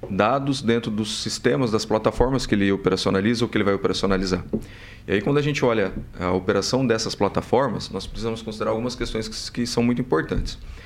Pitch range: 100-120 Hz